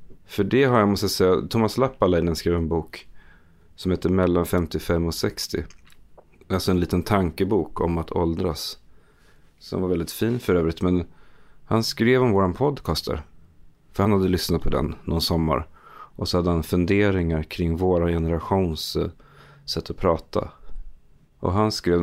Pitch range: 85-100 Hz